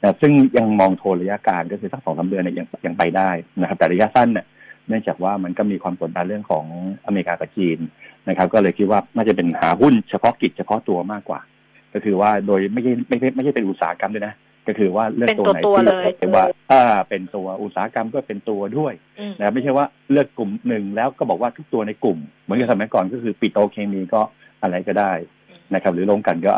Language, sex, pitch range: Thai, male, 95-115 Hz